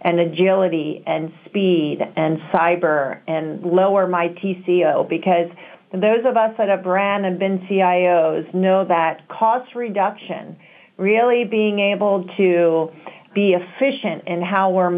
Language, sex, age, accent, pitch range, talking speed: English, female, 40-59, American, 175-215 Hz, 130 wpm